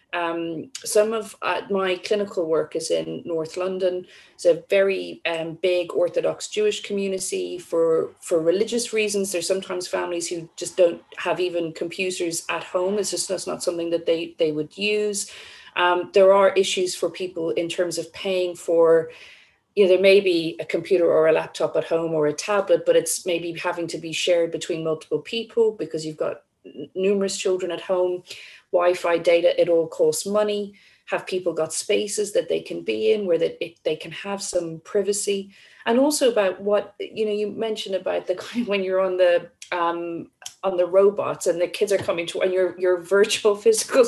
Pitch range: 170-210 Hz